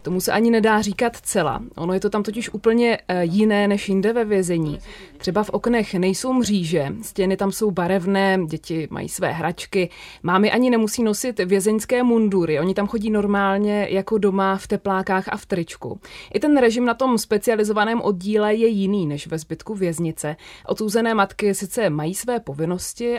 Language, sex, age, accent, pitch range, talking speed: Czech, female, 20-39, native, 185-220 Hz, 170 wpm